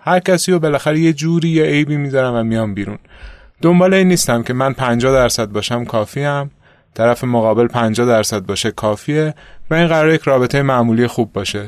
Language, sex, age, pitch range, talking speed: Persian, male, 30-49, 110-140 Hz, 180 wpm